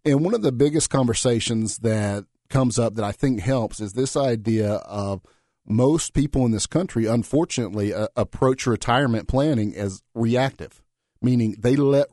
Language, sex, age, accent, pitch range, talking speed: English, male, 40-59, American, 110-140 Hz, 160 wpm